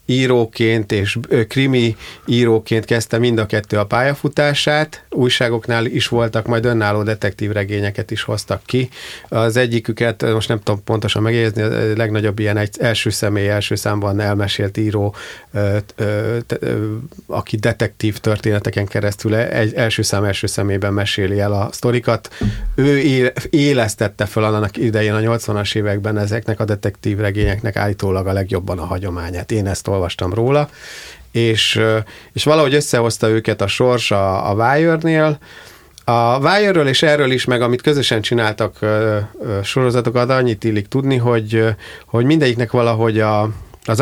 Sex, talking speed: male, 140 wpm